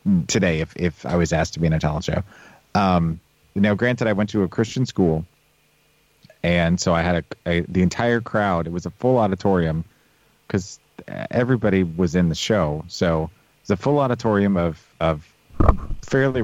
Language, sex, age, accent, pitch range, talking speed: English, male, 40-59, American, 85-105 Hz, 185 wpm